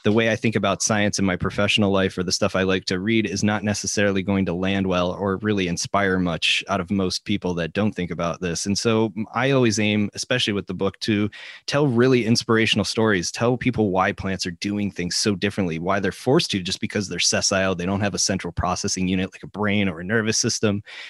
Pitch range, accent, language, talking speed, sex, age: 95-115 Hz, American, English, 235 wpm, male, 20-39